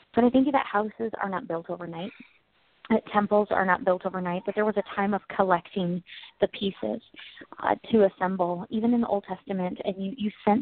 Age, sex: 20-39, female